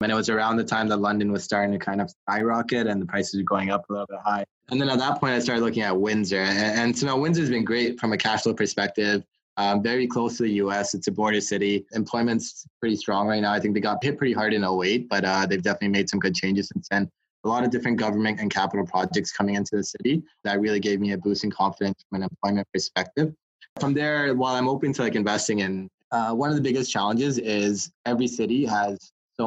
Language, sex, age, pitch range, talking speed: English, male, 20-39, 100-115 Hz, 255 wpm